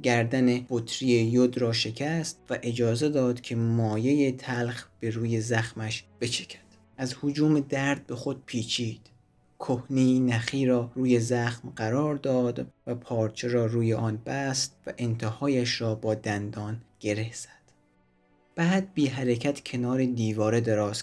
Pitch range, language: 110-130 Hz, Persian